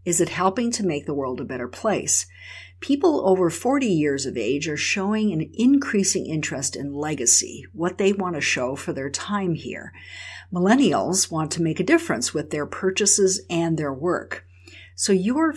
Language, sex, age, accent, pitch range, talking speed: English, female, 50-69, American, 135-190 Hz, 175 wpm